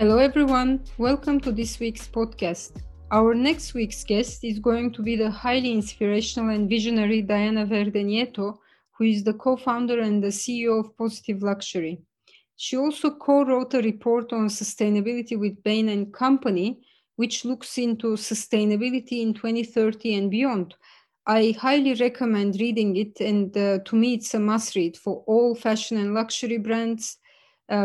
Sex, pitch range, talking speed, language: female, 215-245 Hz, 150 wpm, English